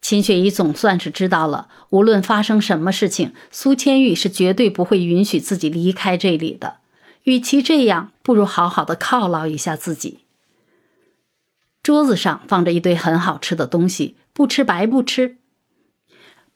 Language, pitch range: Chinese, 175-250 Hz